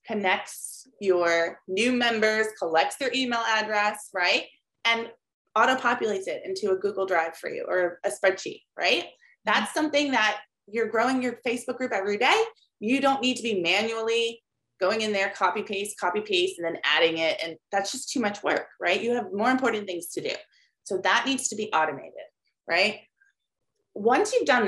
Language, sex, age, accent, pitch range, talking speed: English, female, 20-39, American, 195-265 Hz, 175 wpm